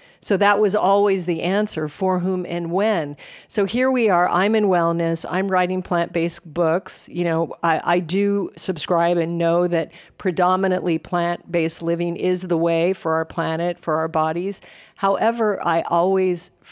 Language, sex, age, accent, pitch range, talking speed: English, female, 50-69, American, 165-195 Hz, 160 wpm